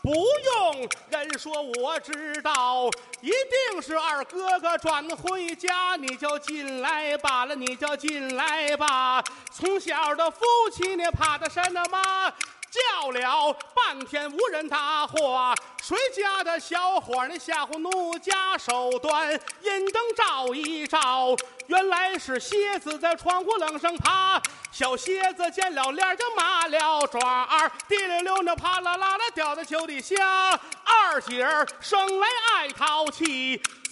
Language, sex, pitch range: Chinese, male, 300-380 Hz